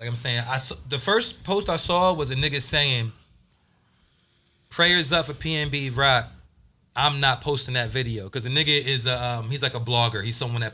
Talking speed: 200 wpm